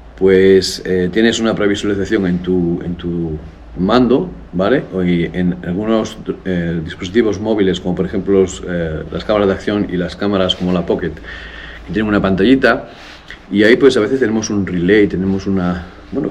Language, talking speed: Spanish, 175 wpm